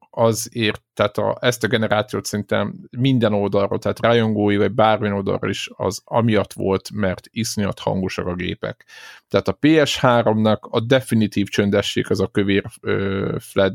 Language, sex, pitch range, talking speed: Hungarian, male, 100-120 Hz, 150 wpm